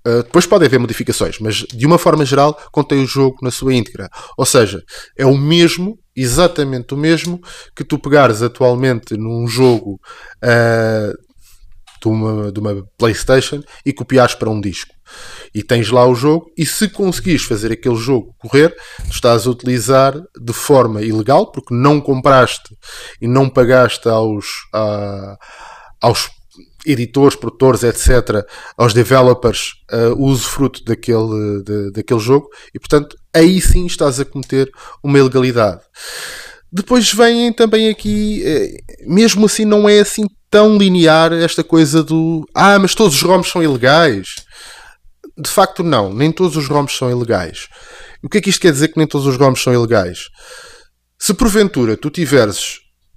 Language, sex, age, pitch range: Portuguese, male, 20-39, 115-165 Hz